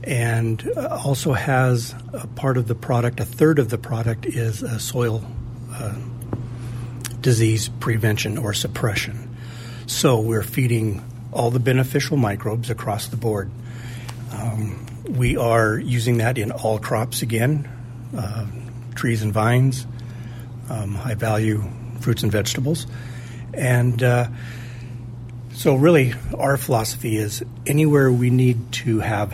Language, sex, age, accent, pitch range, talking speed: English, male, 50-69, American, 115-125 Hz, 125 wpm